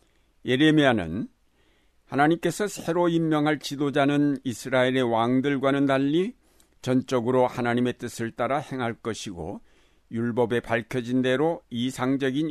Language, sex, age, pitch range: Korean, male, 60-79, 120-140 Hz